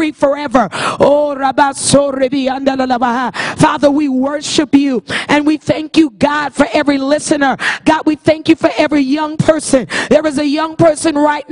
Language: English